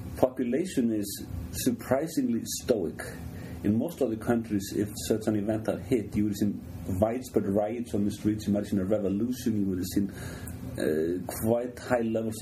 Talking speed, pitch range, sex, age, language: 170 wpm, 100-115 Hz, male, 40-59, English